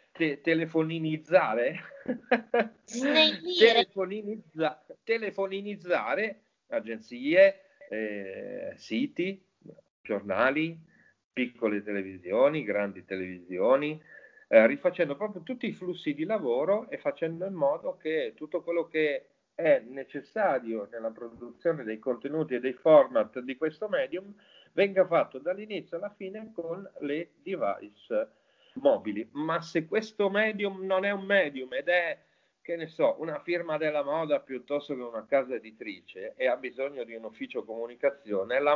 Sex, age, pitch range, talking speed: male, 40-59, 135-210 Hz, 120 wpm